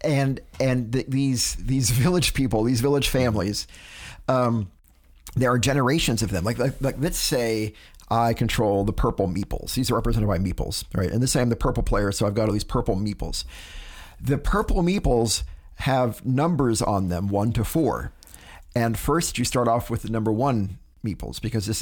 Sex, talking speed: male, 185 wpm